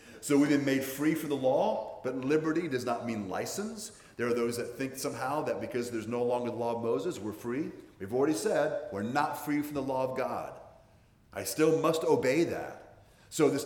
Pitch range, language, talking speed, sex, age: 115-155 Hz, English, 215 wpm, male, 40-59